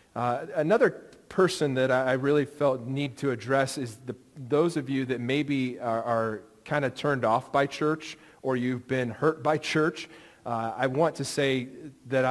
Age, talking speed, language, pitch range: 40-59, 170 wpm, English, 120-140 Hz